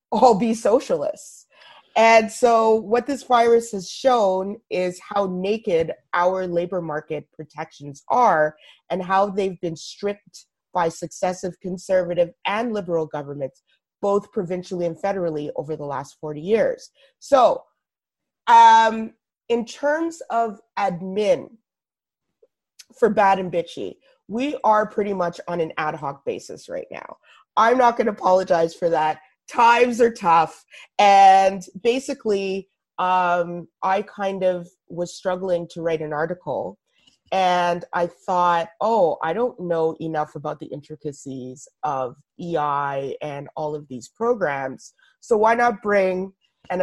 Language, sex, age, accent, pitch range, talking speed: English, female, 30-49, American, 165-225 Hz, 135 wpm